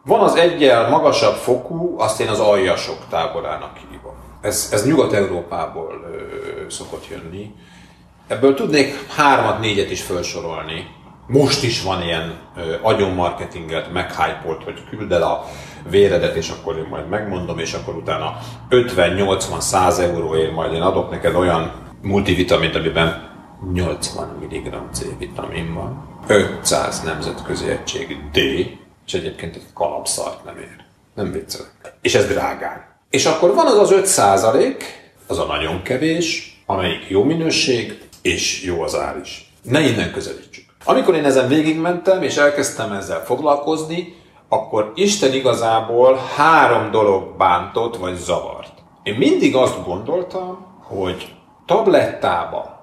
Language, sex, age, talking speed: Hungarian, male, 40-59, 130 wpm